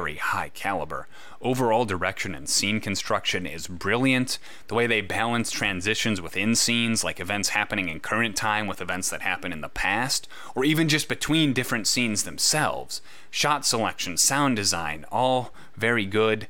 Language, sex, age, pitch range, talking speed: English, male, 30-49, 95-115 Hz, 160 wpm